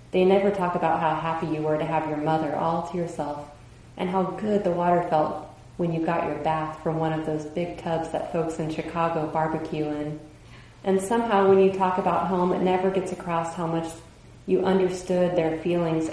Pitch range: 155-175 Hz